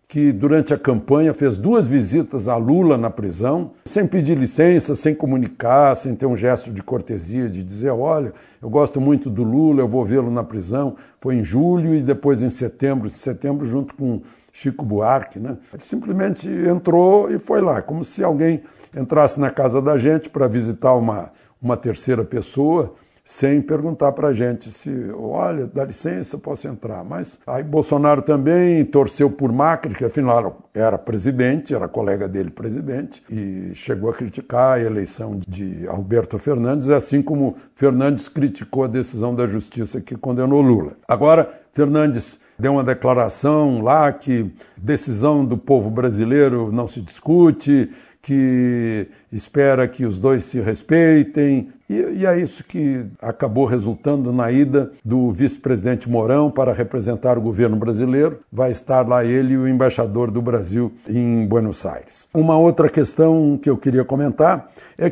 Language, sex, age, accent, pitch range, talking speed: Portuguese, male, 60-79, Brazilian, 120-150 Hz, 160 wpm